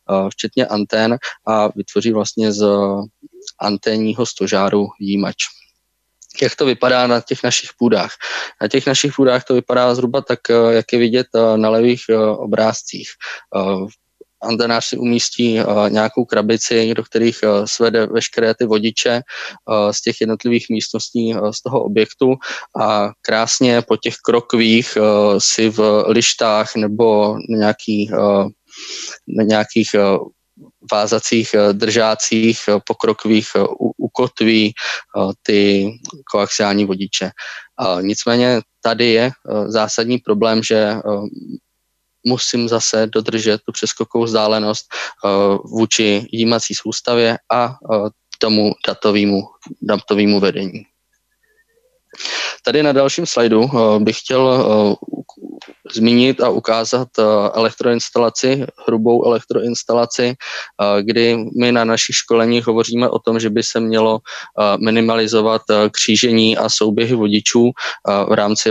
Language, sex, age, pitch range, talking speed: Czech, male, 20-39, 105-120 Hz, 105 wpm